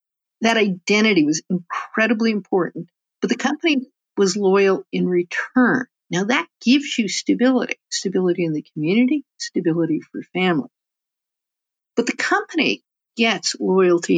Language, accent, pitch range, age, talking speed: English, American, 180-255 Hz, 50-69, 125 wpm